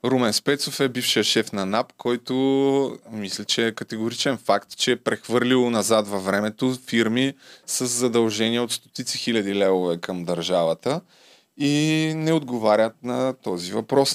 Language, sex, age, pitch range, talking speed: Bulgarian, male, 20-39, 105-135 Hz, 145 wpm